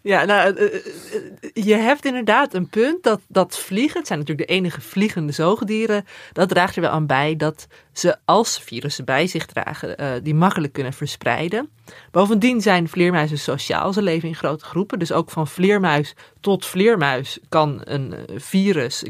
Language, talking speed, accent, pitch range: Dutch, 165 wpm, Dutch, 155-215 Hz